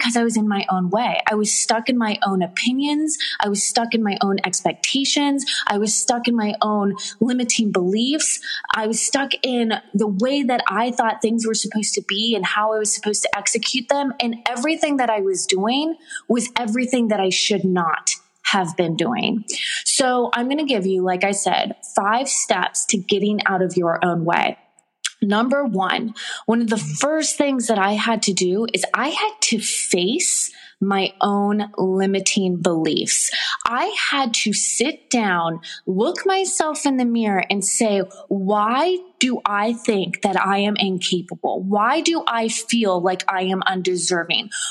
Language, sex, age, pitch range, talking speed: English, female, 20-39, 195-250 Hz, 180 wpm